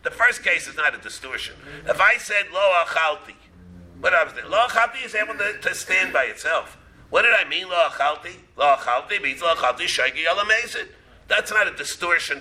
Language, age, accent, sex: English, 50-69, American, male